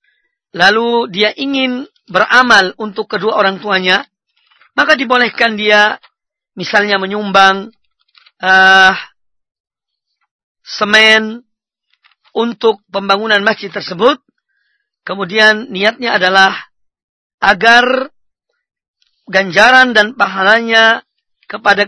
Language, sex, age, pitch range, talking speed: Indonesian, female, 40-59, 200-245 Hz, 75 wpm